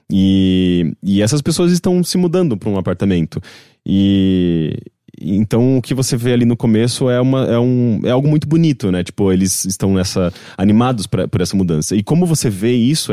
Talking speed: 190 wpm